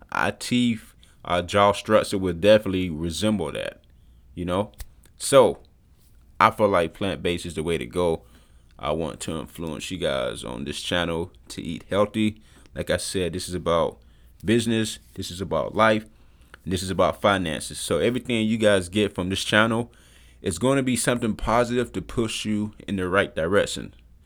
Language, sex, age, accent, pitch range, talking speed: English, male, 20-39, American, 90-120 Hz, 180 wpm